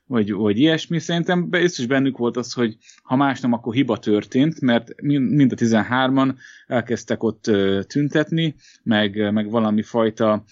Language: Hungarian